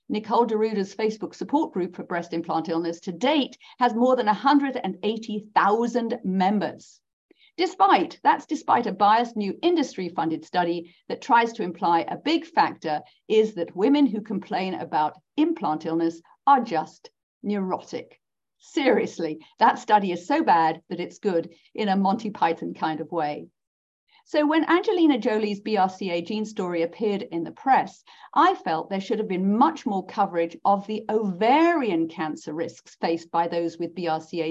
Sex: female